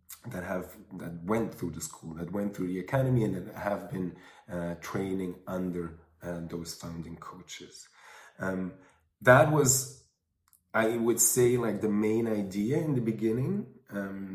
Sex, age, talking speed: male, 30-49, 155 wpm